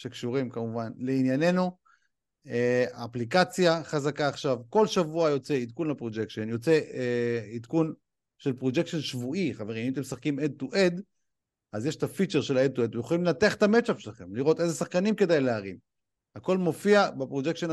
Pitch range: 130-200 Hz